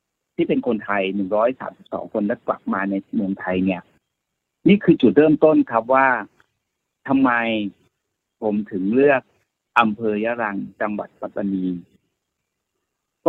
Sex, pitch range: male, 105-130 Hz